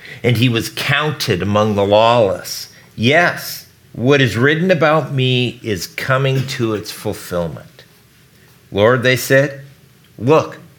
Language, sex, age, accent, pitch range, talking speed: English, male, 50-69, American, 95-130 Hz, 120 wpm